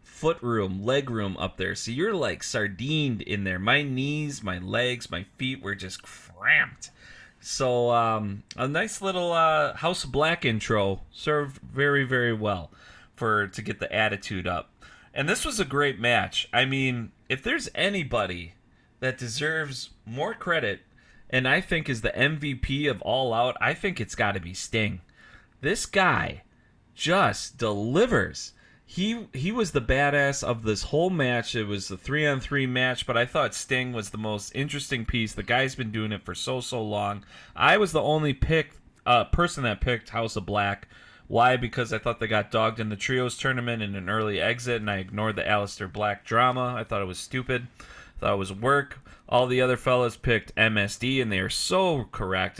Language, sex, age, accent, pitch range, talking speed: English, male, 30-49, American, 105-135 Hz, 185 wpm